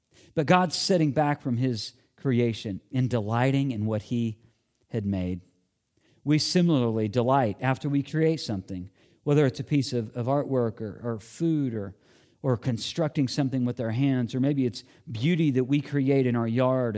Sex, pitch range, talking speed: male, 110-150 Hz, 170 wpm